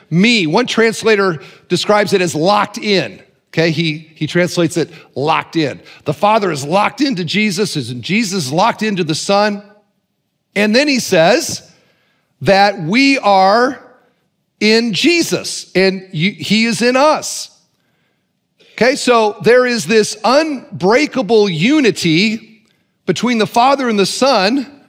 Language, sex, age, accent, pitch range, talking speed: English, male, 40-59, American, 165-230 Hz, 135 wpm